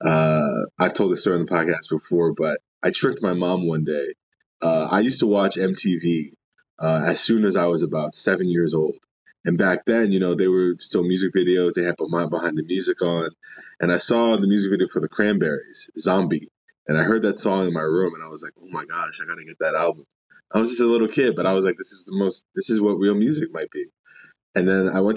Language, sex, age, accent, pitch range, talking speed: English, male, 20-39, American, 85-100 Hz, 250 wpm